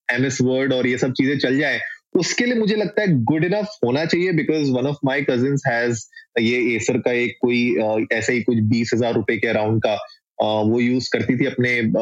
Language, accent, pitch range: Hindi, native, 120-145 Hz